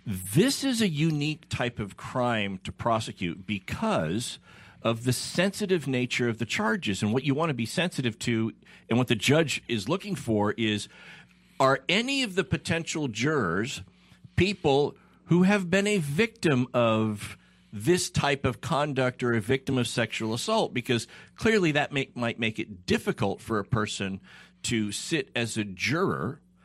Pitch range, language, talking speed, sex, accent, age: 105-145 Hz, English, 160 wpm, male, American, 50-69